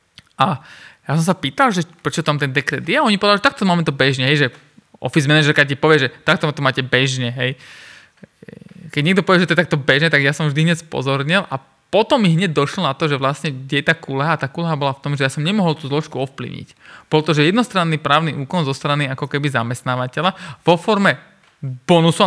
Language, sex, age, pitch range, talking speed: Slovak, male, 20-39, 135-170 Hz, 215 wpm